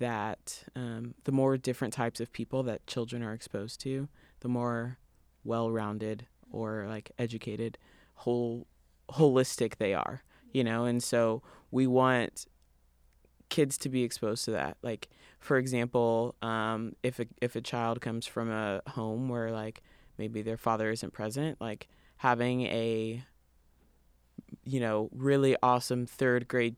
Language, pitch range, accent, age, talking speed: English, 110-125 Hz, American, 20-39, 140 wpm